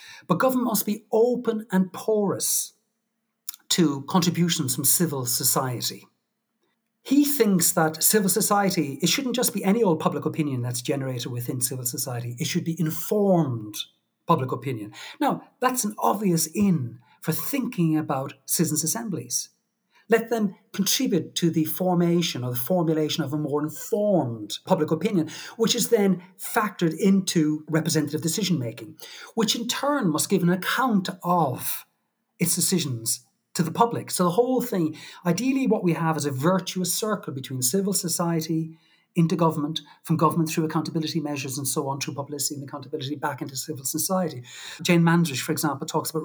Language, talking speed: English, 155 wpm